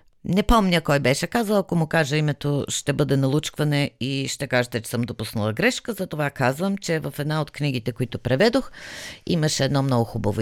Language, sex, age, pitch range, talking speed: Bulgarian, female, 50-69, 115-185 Hz, 185 wpm